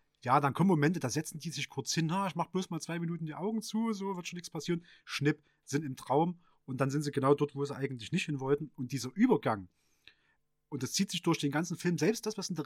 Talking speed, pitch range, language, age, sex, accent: 270 wpm, 140-190 Hz, German, 30-49, male, German